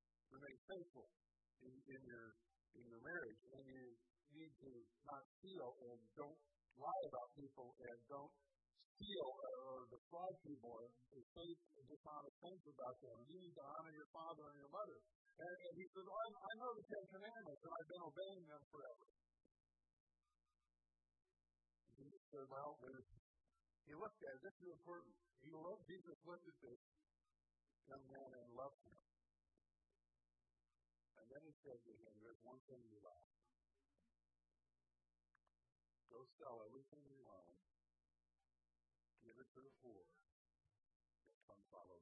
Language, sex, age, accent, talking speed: English, male, 50-69, American, 135 wpm